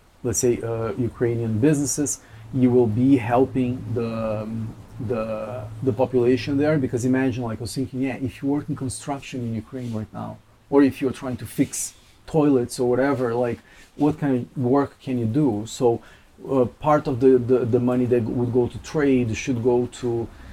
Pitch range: 115-140 Hz